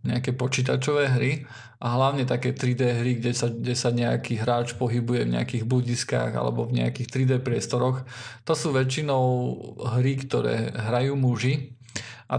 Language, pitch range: Slovak, 120-130 Hz